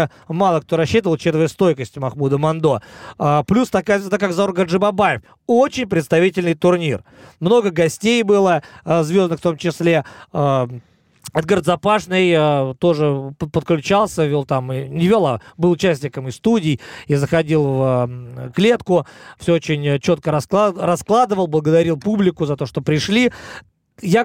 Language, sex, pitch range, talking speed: Russian, male, 160-210 Hz, 130 wpm